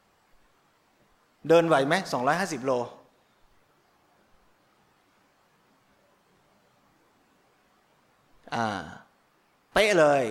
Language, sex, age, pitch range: Thai, male, 30-49, 135-170 Hz